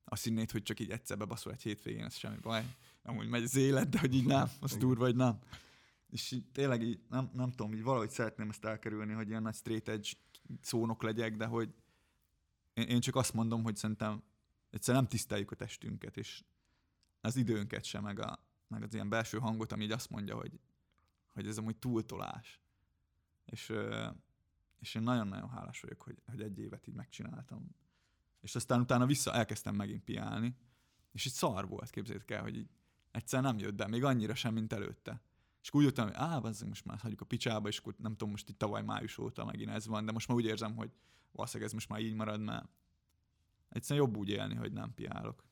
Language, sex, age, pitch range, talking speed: Hungarian, male, 20-39, 105-120 Hz, 205 wpm